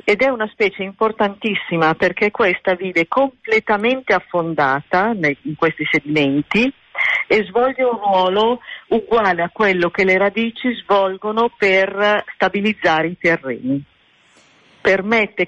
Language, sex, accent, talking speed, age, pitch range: Italian, female, native, 110 wpm, 50-69, 155-205 Hz